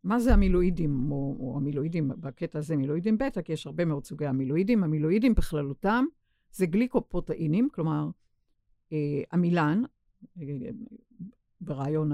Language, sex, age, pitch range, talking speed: Hebrew, female, 50-69, 155-195 Hz, 115 wpm